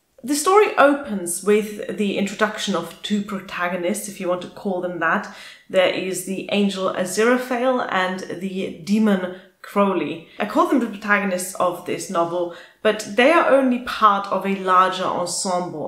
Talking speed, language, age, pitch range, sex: 160 wpm, English, 30-49, 185-240 Hz, female